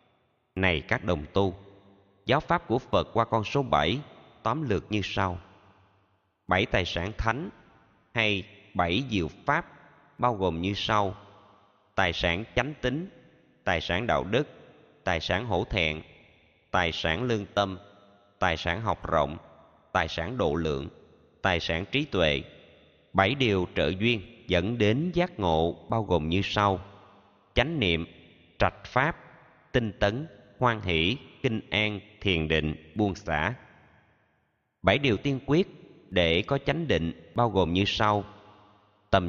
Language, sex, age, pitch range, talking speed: Vietnamese, male, 20-39, 90-115 Hz, 145 wpm